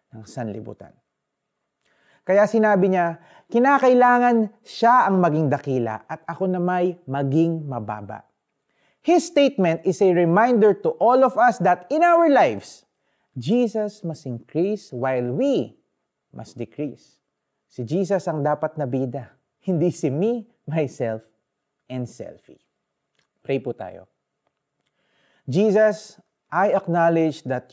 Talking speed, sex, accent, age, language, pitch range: 115 wpm, male, native, 30-49, Filipino, 135-205 Hz